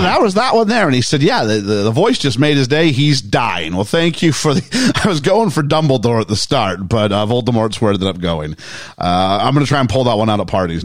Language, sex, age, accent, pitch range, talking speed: English, male, 40-59, American, 110-155 Hz, 275 wpm